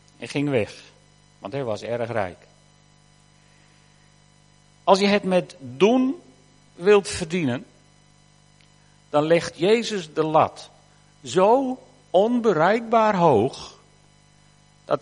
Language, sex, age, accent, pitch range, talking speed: Dutch, male, 50-69, Dutch, 145-195 Hz, 95 wpm